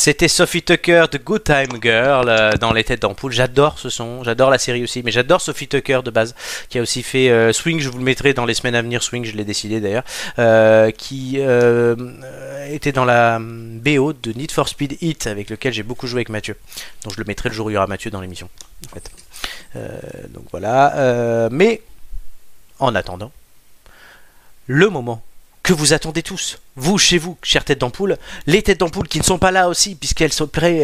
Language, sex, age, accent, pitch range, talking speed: French, male, 30-49, French, 115-160 Hz, 215 wpm